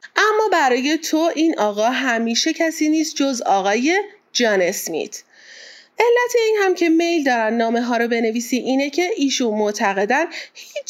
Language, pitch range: Persian, 205-320 Hz